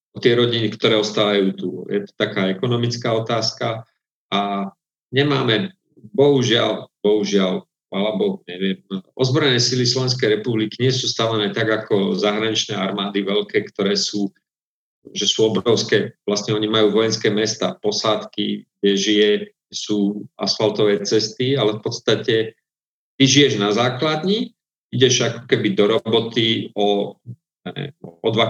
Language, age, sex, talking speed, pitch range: Slovak, 40-59, male, 130 wpm, 105-125 Hz